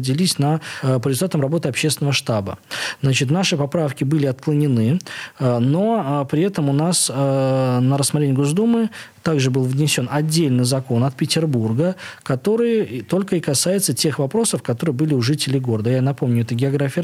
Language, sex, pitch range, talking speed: Russian, male, 130-160 Hz, 145 wpm